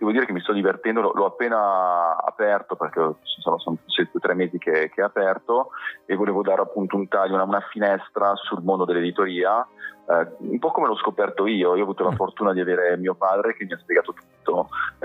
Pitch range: 85-95 Hz